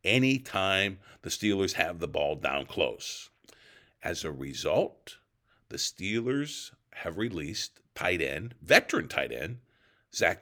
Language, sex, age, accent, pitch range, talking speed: English, male, 50-69, American, 85-120 Hz, 120 wpm